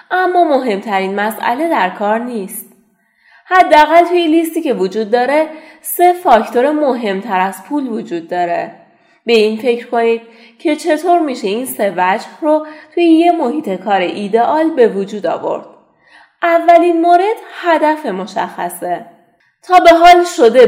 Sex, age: female, 30-49